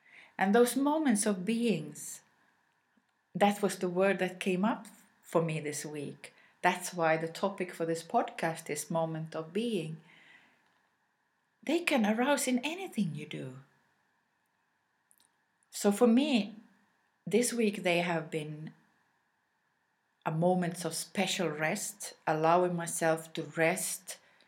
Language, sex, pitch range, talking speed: English, female, 160-205 Hz, 125 wpm